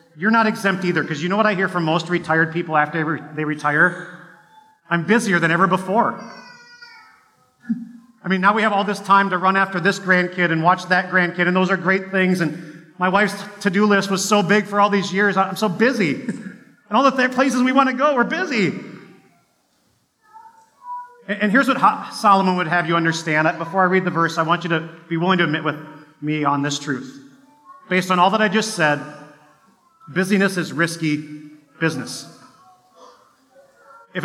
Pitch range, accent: 170-215 Hz, American